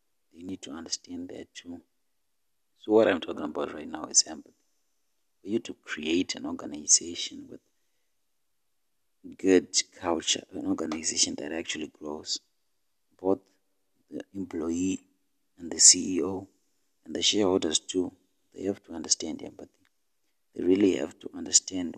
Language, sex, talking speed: English, male, 135 wpm